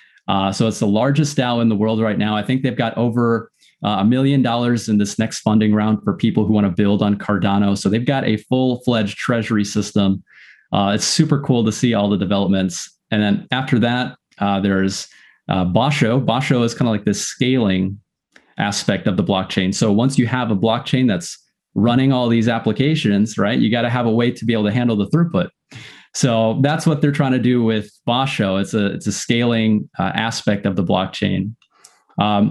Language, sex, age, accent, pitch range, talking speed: English, male, 30-49, American, 105-130 Hz, 210 wpm